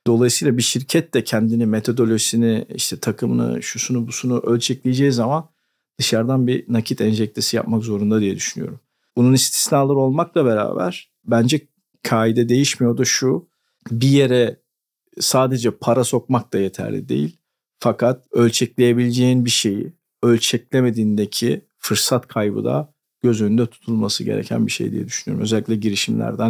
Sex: male